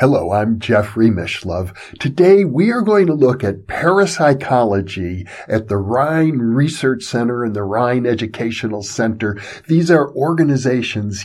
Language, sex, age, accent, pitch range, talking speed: English, male, 50-69, American, 110-160 Hz, 135 wpm